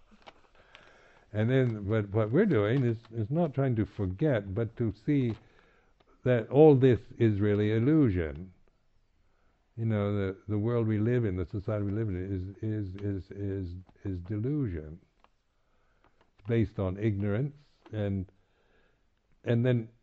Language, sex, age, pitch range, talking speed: English, male, 60-79, 95-125 Hz, 145 wpm